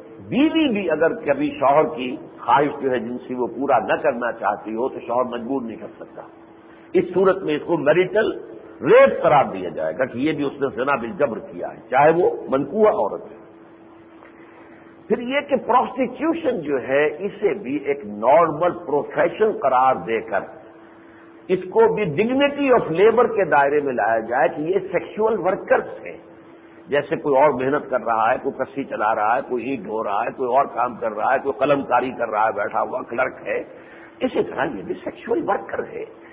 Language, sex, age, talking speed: Urdu, male, 60-79, 195 wpm